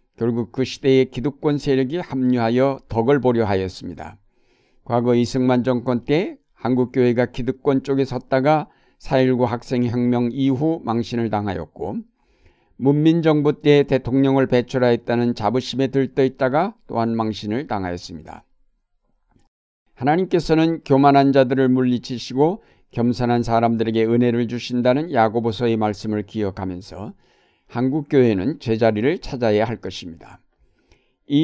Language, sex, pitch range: Korean, male, 115-135 Hz